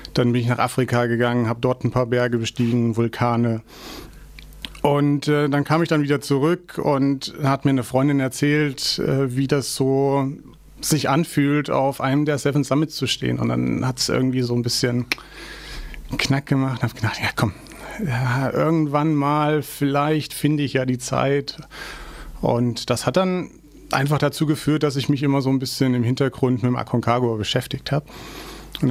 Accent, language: German, German